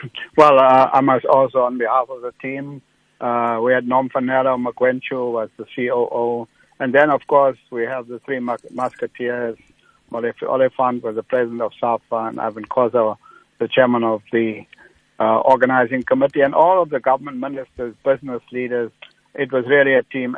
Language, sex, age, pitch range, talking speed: English, male, 60-79, 120-135 Hz, 165 wpm